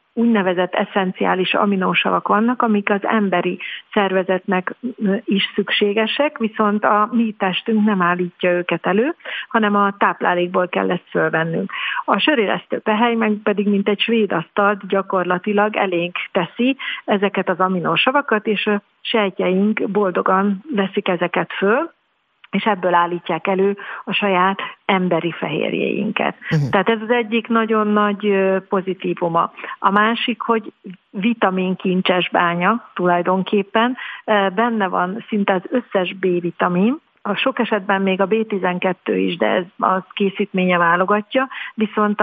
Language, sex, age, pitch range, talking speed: Hungarian, female, 50-69, 185-215 Hz, 120 wpm